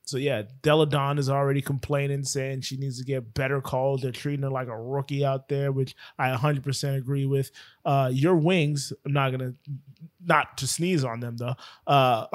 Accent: American